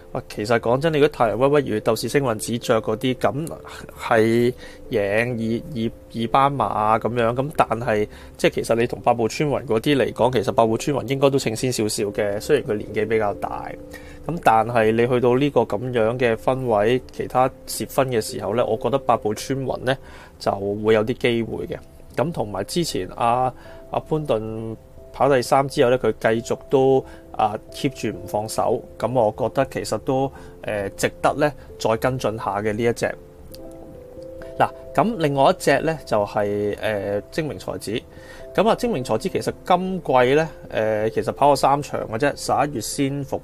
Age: 20-39